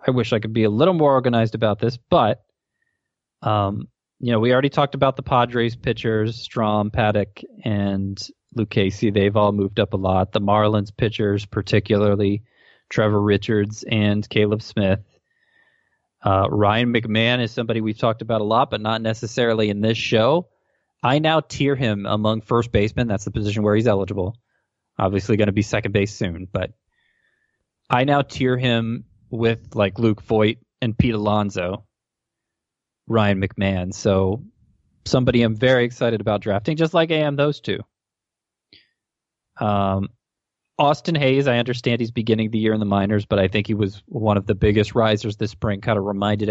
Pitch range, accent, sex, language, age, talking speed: 105-125 Hz, American, male, English, 20-39, 170 wpm